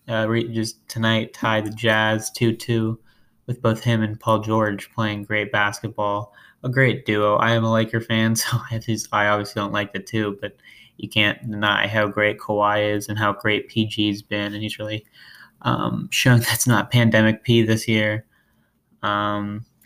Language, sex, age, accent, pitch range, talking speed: English, male, 20-39, American, 105-115 Hz, 170 wpm